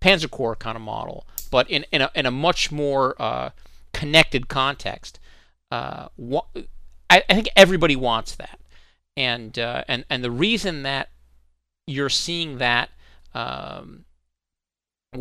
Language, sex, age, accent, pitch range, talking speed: English, male, 40-59, American, 110-145 Hz, 140 wpm